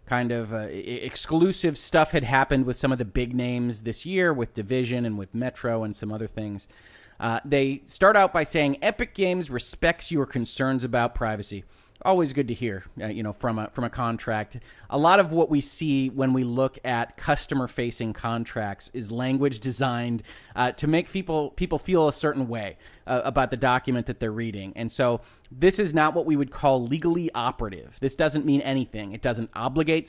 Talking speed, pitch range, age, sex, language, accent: 195 wpm, 115-150 Hz, 30-49, male, English, American